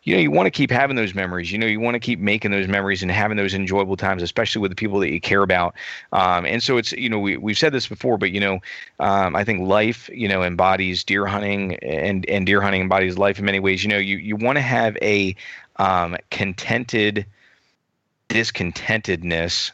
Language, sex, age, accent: English, male, 30-49, American